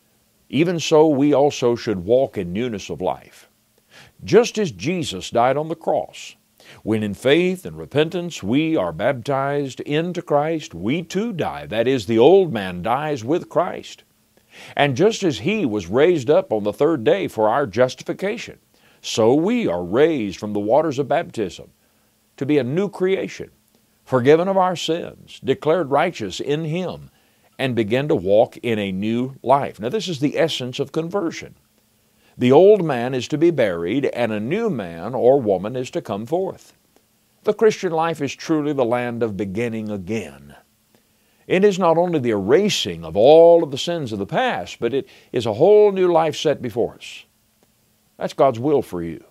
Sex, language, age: male, English, 50-69